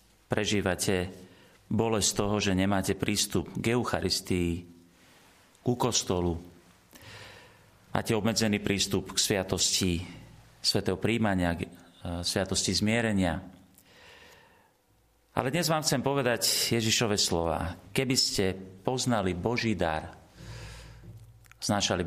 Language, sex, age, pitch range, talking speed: Slovak, male, 40-59, 95-125 Hz, 90 wpm